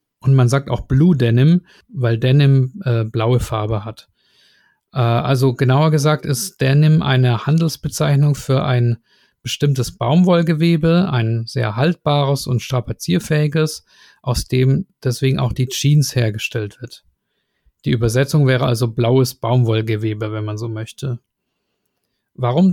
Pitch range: 120-150 Hz